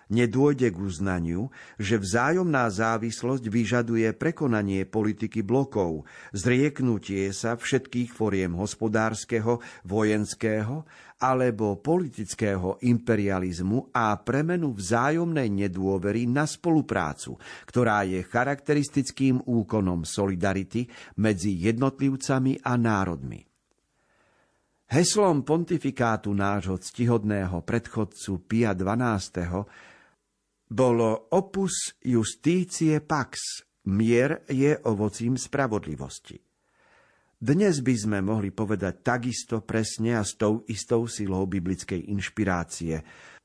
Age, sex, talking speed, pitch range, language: 50-69, male, 85 wpm, 100-135 Hz, Slovak